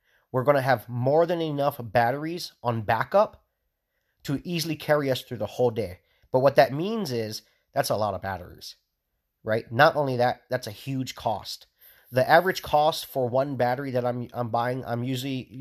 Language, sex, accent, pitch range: English, male, American, 115-140 Hz